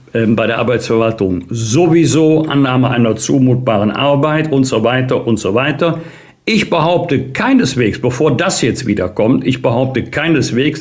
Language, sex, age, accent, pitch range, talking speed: German, male, 60-79, German, 125-155 Hz, 135 wpm